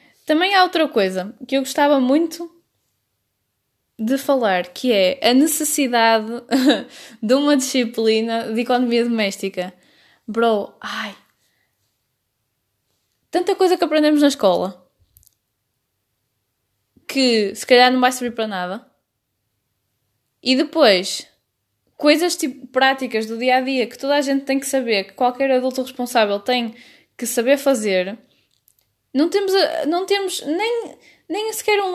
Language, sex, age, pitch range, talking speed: Portuguese, female, 10-29, 200-280 Hz, 125 wpm